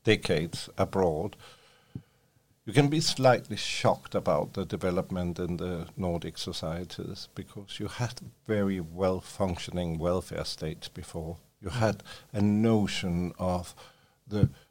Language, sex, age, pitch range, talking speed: English, male, 50-69, 90-115 Hz, 115 wpm